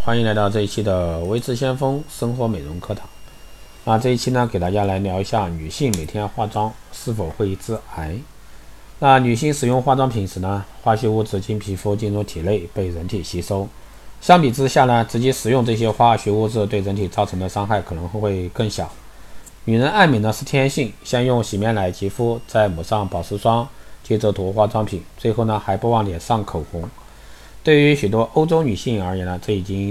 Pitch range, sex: 95-120 Hz, male